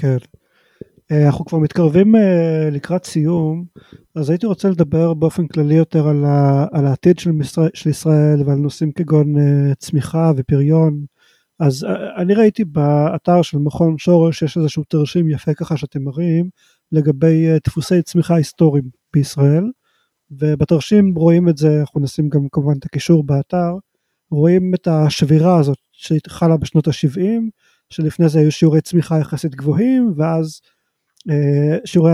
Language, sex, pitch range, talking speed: Hebrew, male, 150-175 Hz, 130 wpm